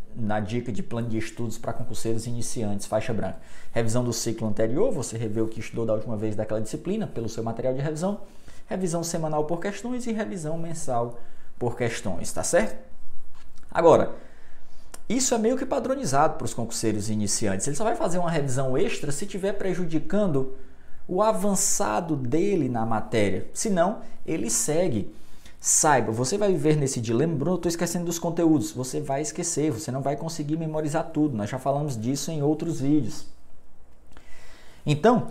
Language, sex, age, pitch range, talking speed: Portuguese, male, 20-39, 115-175 Hz, 165 wpm